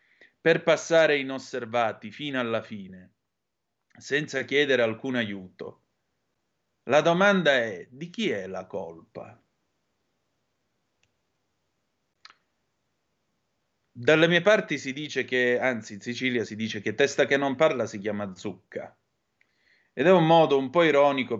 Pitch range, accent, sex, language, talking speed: 110-145 Hz, native, male, Italian, 125 wpm